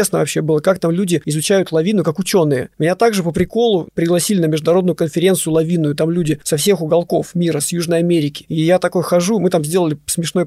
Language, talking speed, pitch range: Russian, 205 wpm, 165-195 Hz